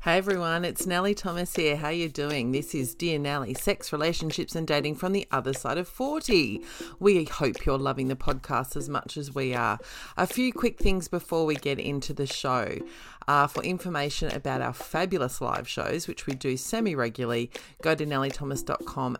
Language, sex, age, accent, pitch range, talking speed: English, female, 30-49, Australian, 135-180 Hz, 190 wpm